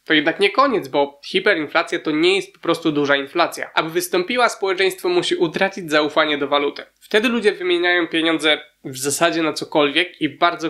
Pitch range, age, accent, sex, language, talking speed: 155-215 Hz, 20-39, native, male, Polish, 175 wpm